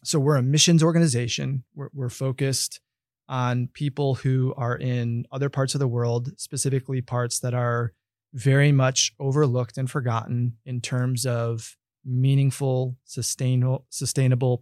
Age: 20-39